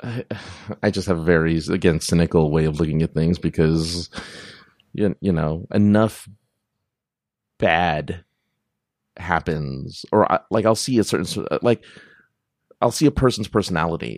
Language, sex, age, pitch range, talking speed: English, male, 30-49, 85-110 Hz, 125 wpm